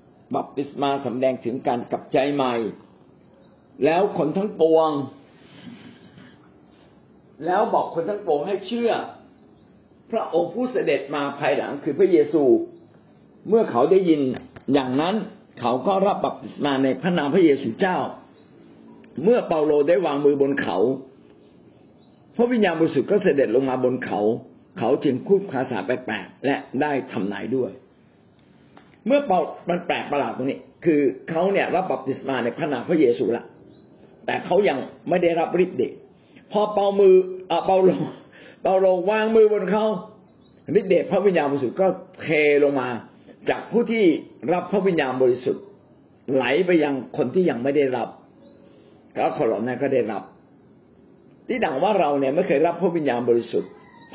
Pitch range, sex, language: 130-200 Hz, male, Thai